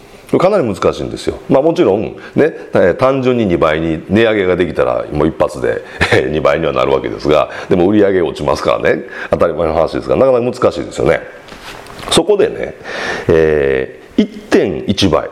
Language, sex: Japanese, male